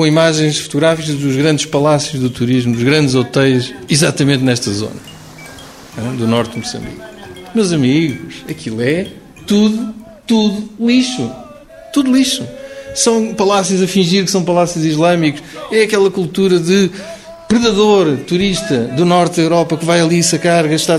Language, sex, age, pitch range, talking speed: Portuguese, male, 50-69, 155-210 Hz, 145 wpm